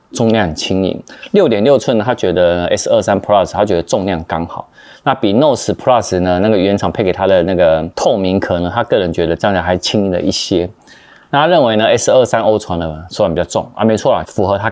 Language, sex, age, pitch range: Chinese, male, 20-39, 90-110 Hz